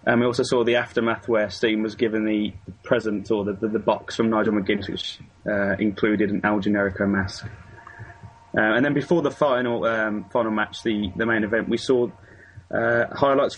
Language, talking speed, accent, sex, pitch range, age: English, 200 wpm, British, male, 105-120 Hz, 20-39